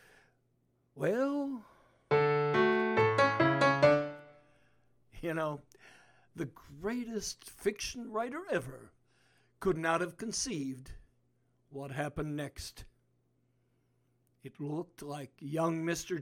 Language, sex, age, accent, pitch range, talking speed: English, male, 60-79, American, 140-170 Hz, 75 wpm